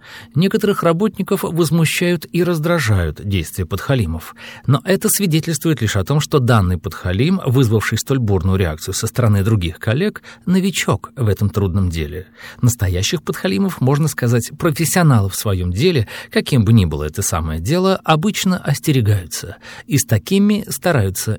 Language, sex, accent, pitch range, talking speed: Russian, male, native, 100-160 Hz, 140 wpm